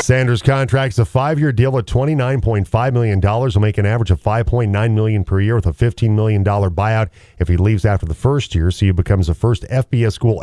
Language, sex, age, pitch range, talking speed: English, male, 40-59, 95-120 Hz, 205 wpm